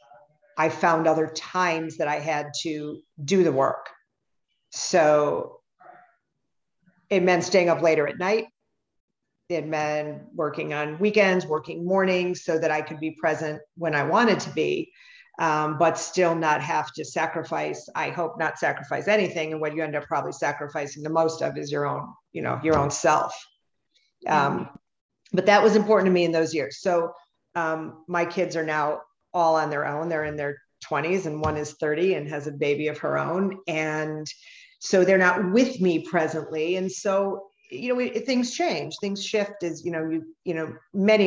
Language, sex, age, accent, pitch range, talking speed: English, female, 50-69, American, 155-185 Hz, 180 wpm